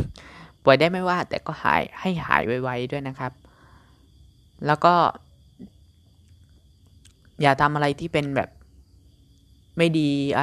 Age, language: 20-39, Thai